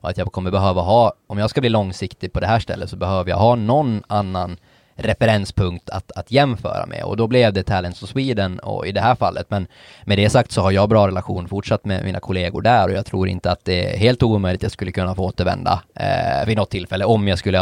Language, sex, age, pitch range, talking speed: Swedish, male, 20-39, 95-110 Hz, 250 wpm